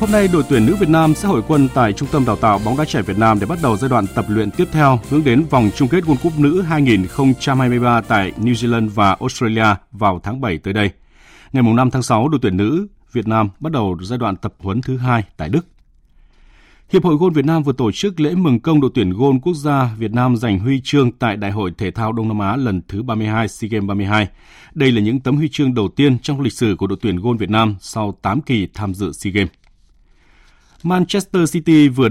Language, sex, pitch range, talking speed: Vietnamese, male, 105-145 Hz, 240 wpm